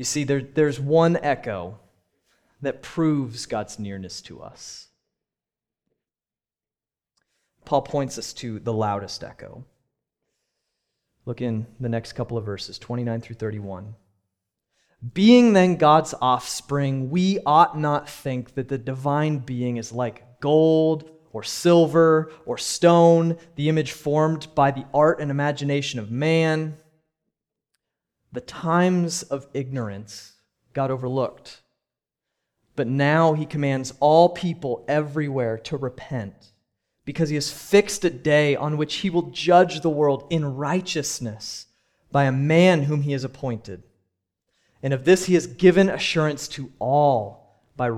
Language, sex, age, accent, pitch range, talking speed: English, male, 30-49, American, 120-160 Hz, 130 wpm